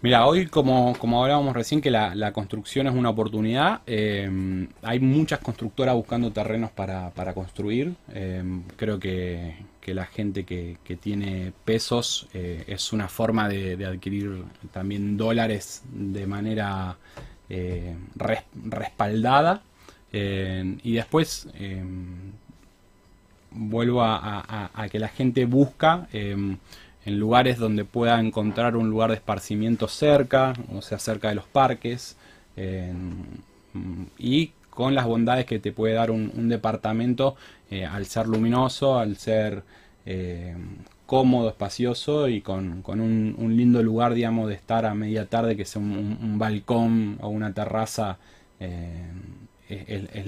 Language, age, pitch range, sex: Spanish, 20-39, 95-120 Hz, male